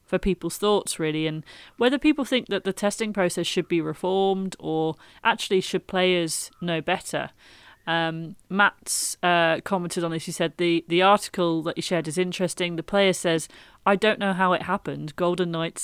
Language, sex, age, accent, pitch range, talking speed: English, female, 30-49, British, 160-190 Hz, 180 wpm